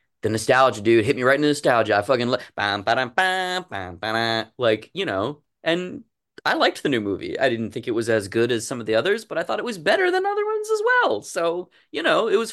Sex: male